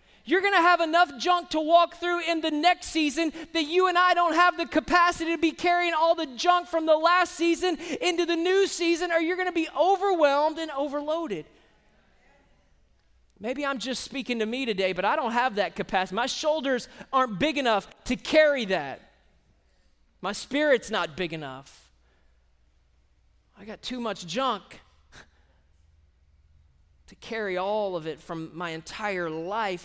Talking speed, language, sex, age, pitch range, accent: 165 wpm, English, male, 20-39, 180-290 Hz, American